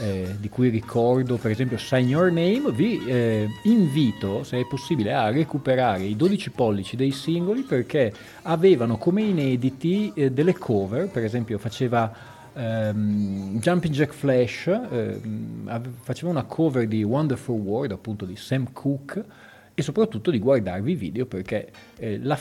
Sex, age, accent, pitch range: male, 40-59, native, 110-145 Hz